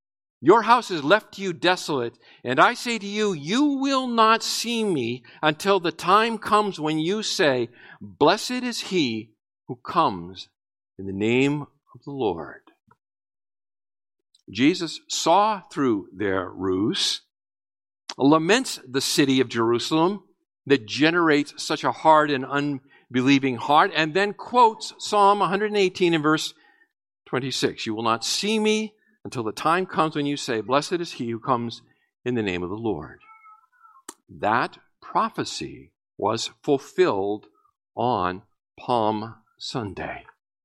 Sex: male